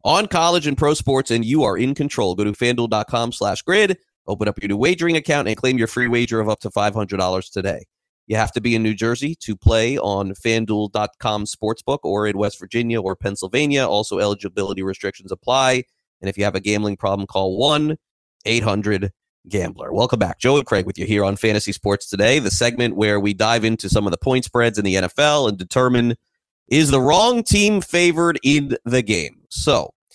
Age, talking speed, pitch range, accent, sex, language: 30-49, 195 wpm, 100-125 Hz, American, male, English